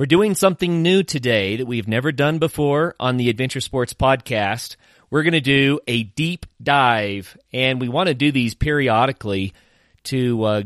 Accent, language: American, English